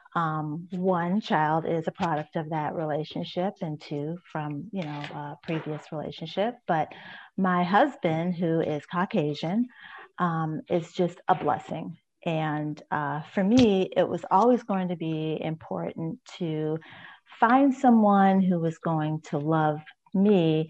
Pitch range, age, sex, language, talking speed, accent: 155-195 Hz, 40-59, female, English, 135 wpm, American